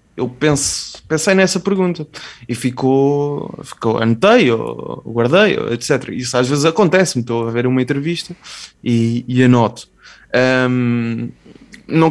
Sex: male